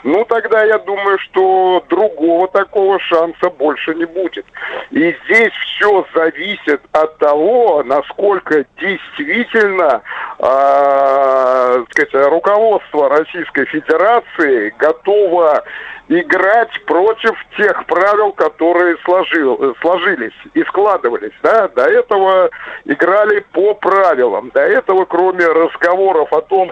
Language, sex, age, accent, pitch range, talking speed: Russian, male, 50-69, native, 150-210 Hz, 105 wpm